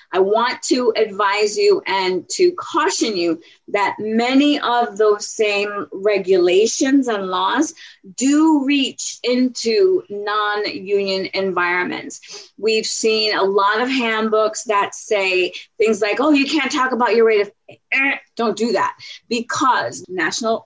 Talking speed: 135 wpm